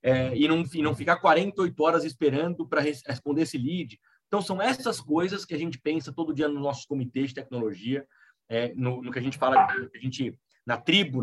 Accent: Brazilian